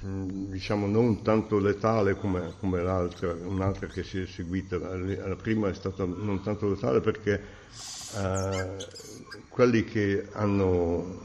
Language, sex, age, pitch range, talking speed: Italian, male, 60-79, 90-105 Hz, 130 wpm